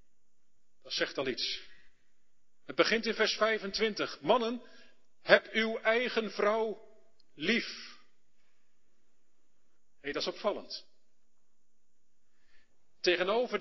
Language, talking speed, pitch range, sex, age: Dutch, 90 wpm, 200-260 Hz, male, 40-59